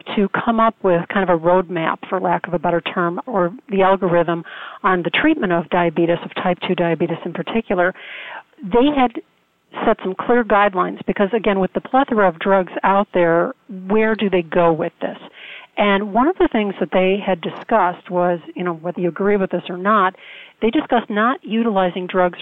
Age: 40-59